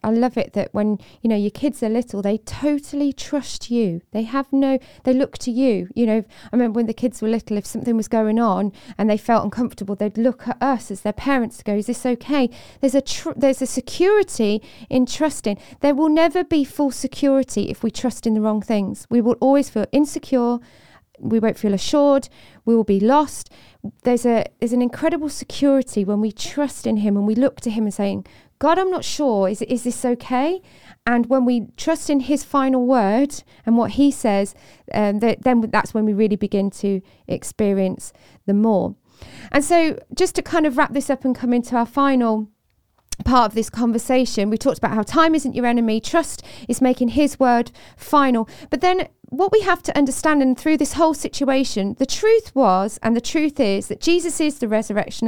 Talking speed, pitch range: 205 wpm, 220-290 Hz